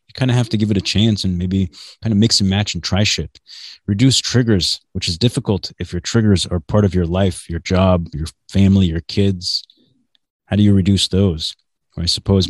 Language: English